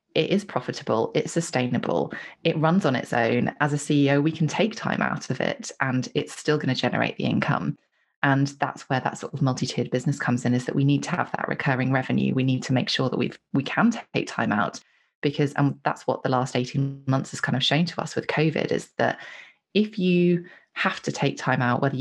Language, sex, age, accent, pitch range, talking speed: English, female, 20-39, British, 140-180 Hz, 230 wpm